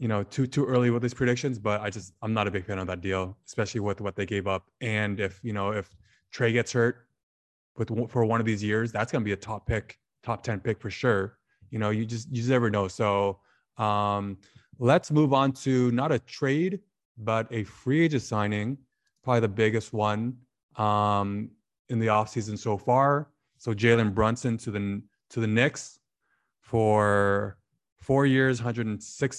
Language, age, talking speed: English, 20-39, 190 wpm